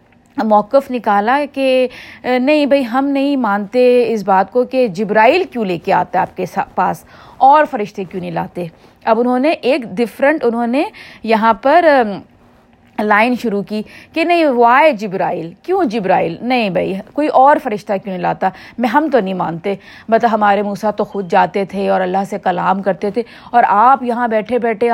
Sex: female